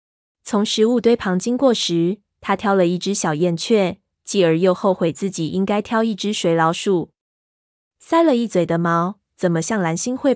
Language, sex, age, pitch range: Chinese, female, 20-39, 180-225 Hz